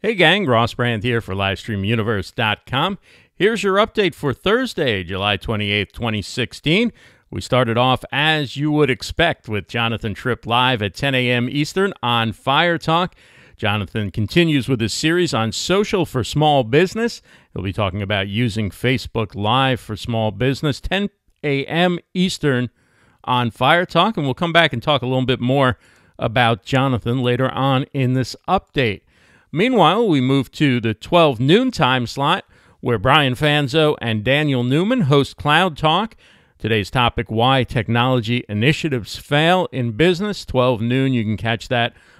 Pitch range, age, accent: 115-150 Hz, 50-69, American